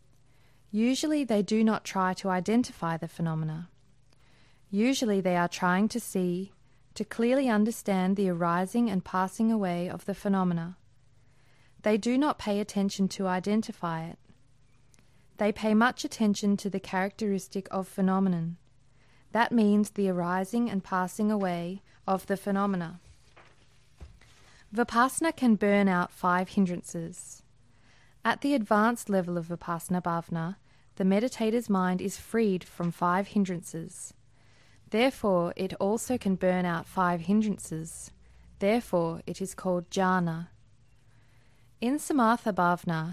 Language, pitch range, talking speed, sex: English, 160-205 Hz, 125 wpm, female